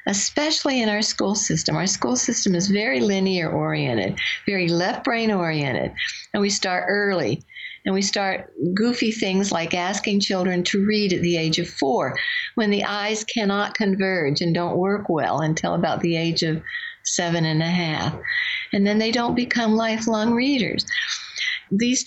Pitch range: 185-260 Hz